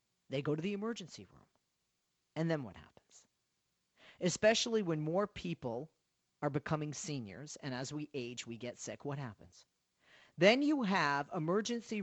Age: 40-59